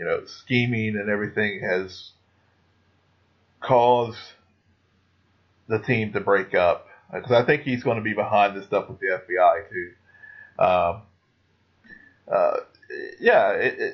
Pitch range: 95-125 Hz